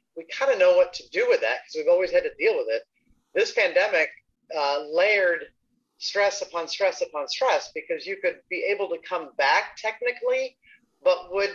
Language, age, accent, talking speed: English, 30-49, American, 190 wpm